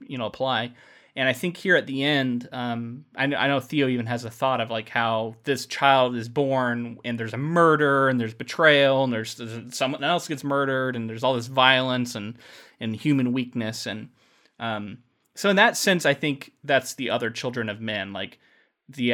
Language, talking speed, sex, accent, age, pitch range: English, 205 wpm, male, American, 20-39, 110-130 Hz